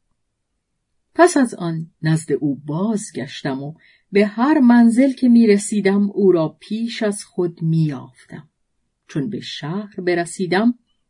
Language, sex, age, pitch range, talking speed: Persian, female, 40-59, 160-230 Hz, 135 wpm